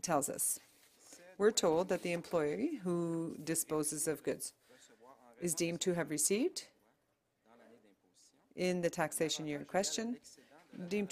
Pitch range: 160-190 Hz